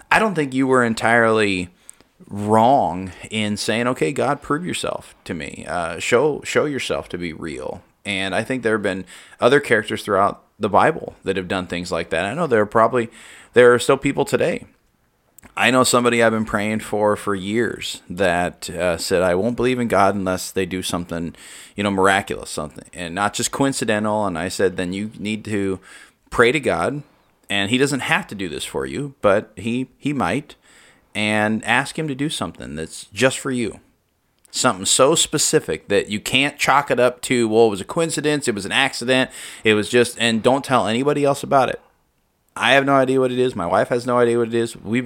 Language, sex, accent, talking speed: English, male, American, 210 wpm